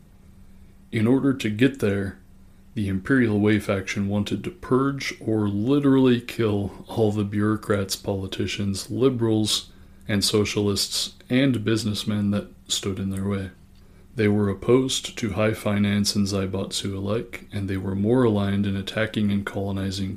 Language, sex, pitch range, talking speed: English, male, 95-110 Hz, 140 wpm